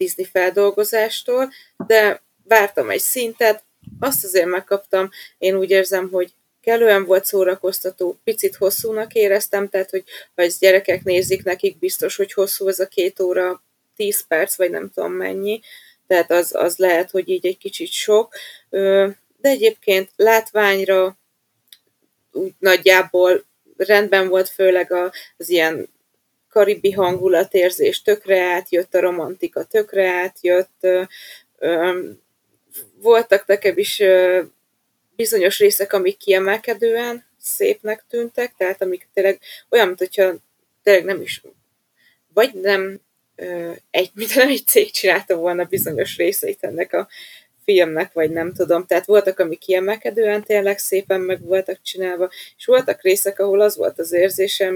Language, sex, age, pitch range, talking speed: Hungarian, female, 20-39, 185-220 Hz, 130 wpm